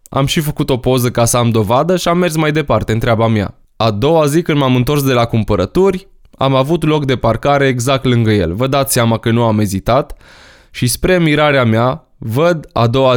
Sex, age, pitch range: male, 20-39, 105-130 Hz